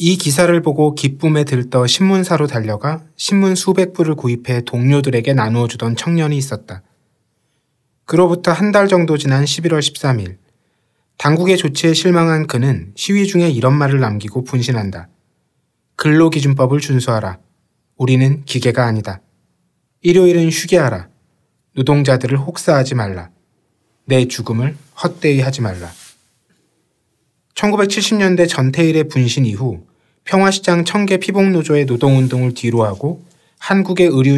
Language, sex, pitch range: Korean, male, 125-170 Hz